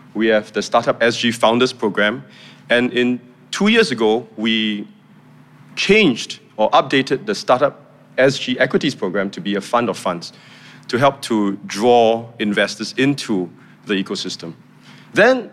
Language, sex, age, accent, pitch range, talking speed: English, male, 30-49, Malaysian, 105-140 Hz, 140 wpm